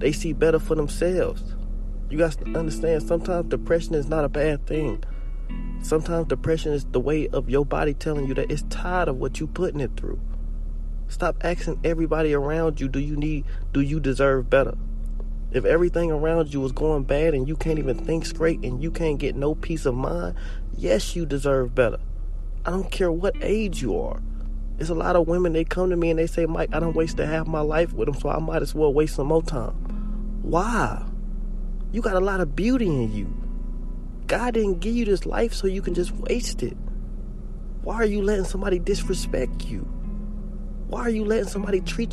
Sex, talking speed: male, 205 wpm